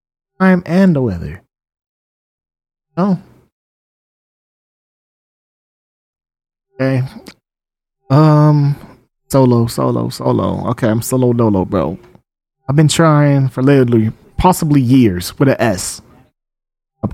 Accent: American